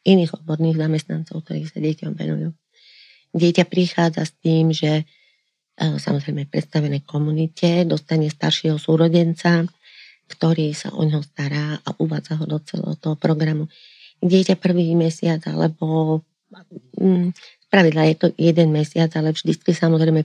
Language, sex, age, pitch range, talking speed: Slovak, female, 40-59, 155-175 Hz, 125 wpm